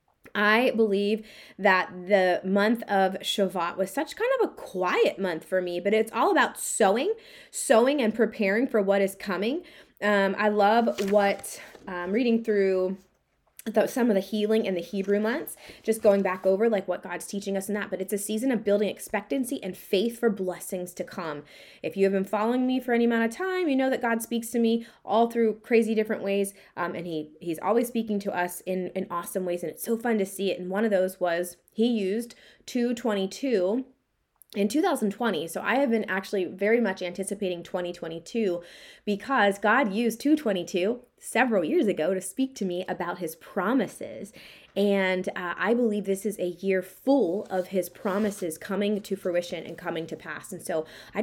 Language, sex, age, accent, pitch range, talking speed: English, female, 20-39, American, 185-230 Hz, 195 wpm